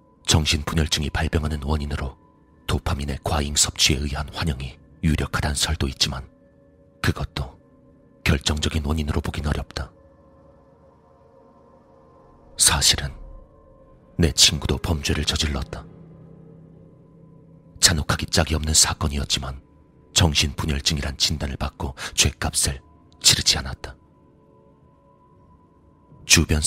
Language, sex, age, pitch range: Korean, male, 40-59, 75-90 Hz